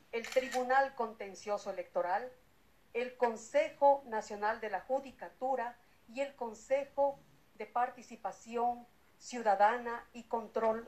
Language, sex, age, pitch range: Spanish, female, 50-69, 220-280 Hz